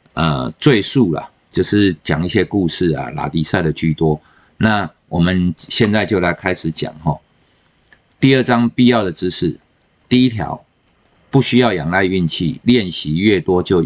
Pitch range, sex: 85-120 Hz, male